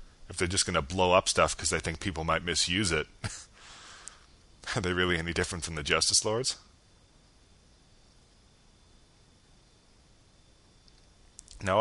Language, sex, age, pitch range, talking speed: English, male, 30-49, 75-90 Hz, 125 wpm